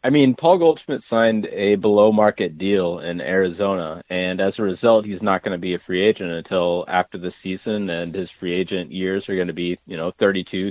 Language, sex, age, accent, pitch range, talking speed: English, male, 30-49, American, 90-105 Hz, 220 wpm